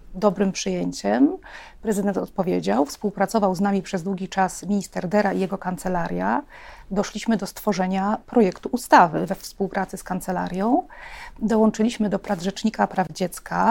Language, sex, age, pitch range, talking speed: Polish, female, 30-49, 190-225 Hz, 130 wpm